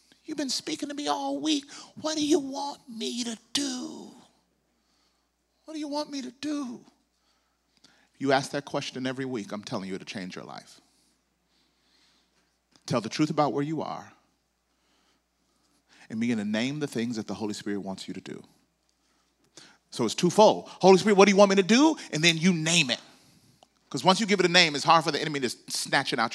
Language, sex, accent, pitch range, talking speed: English, male, American, 120-190 Hz, 200 wpm